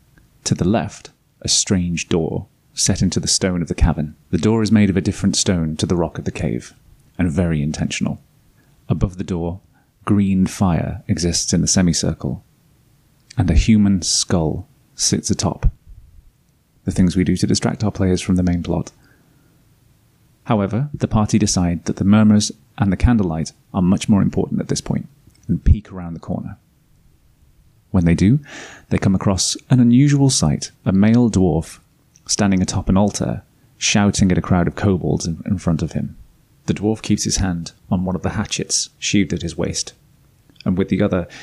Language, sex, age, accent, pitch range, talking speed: English, male, 30-49, British, 90-110 Hz, 180 wpm